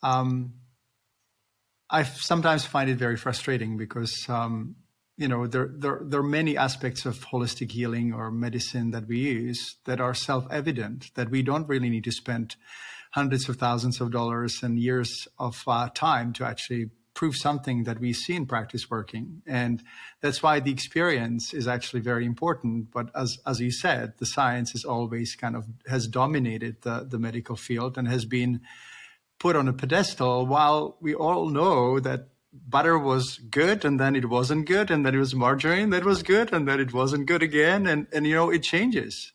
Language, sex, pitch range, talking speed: English, male, 120-145 Hz, 185 wpm